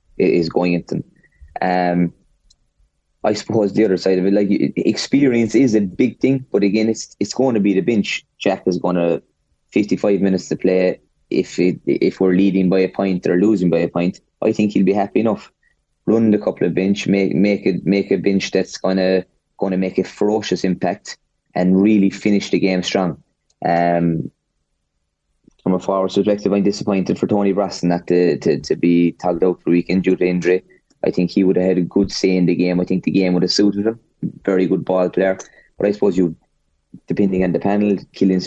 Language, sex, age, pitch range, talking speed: English, male, 20-39, 90-100 Hz, 210 wpm